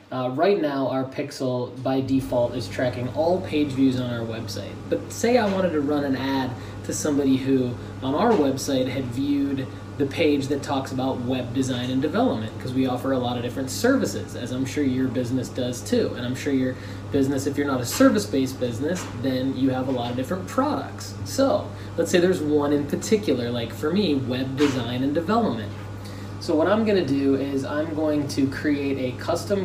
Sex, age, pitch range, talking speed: male, 20-39, 115-140 Hz, 205 wpm